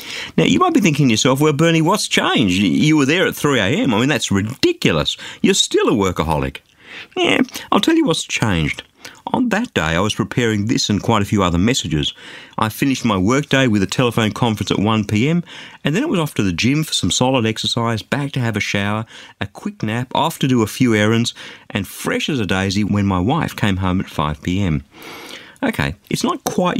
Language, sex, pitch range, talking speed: English, male, 95-135 Hz, 220 wpm